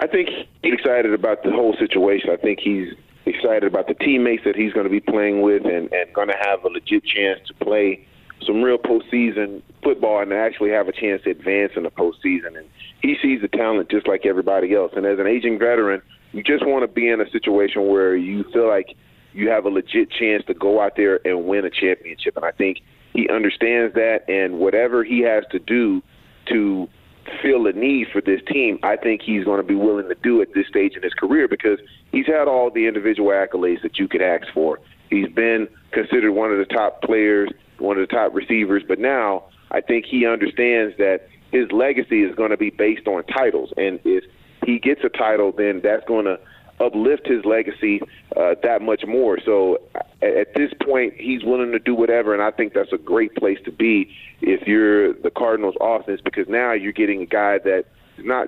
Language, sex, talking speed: English, male, 215 wpm